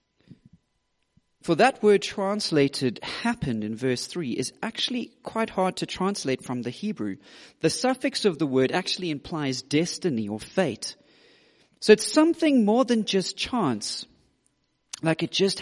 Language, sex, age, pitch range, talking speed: English, male, 40-59, 135-220 Hz, 140 wpm